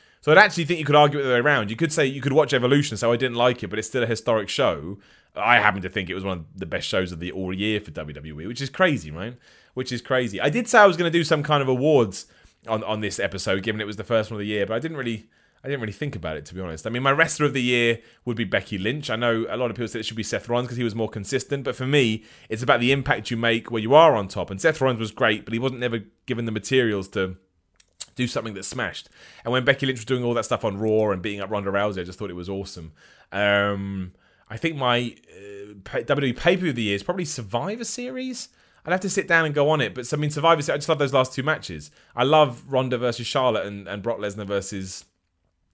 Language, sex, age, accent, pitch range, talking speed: English, male, 30-49, British, 100-140 Hz, 285 wpm